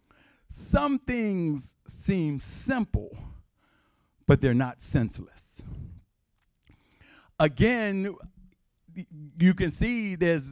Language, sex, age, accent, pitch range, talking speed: English, male, 50-69, American, 130-220 Hz, 75 wpm